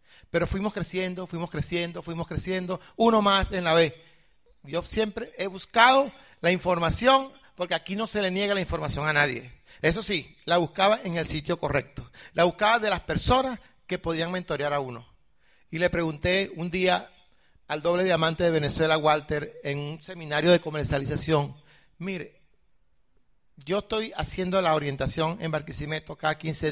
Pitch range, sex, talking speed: 155-205 Hz, male, 160 wpm